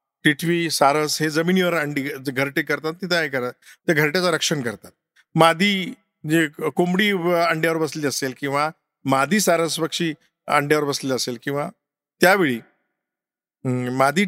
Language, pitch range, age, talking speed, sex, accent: Marathi, 150-190 Hz, 50-69, 120 wpm, male, native